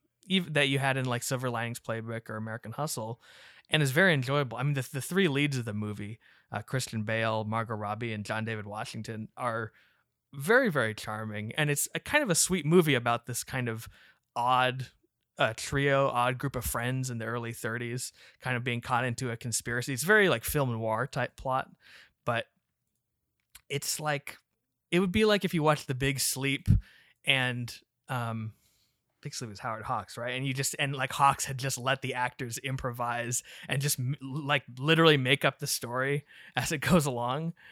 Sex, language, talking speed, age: male, English, 190 wpm, 20-39